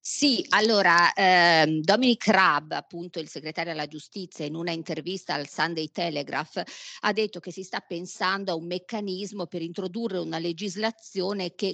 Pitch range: 160-200 Hz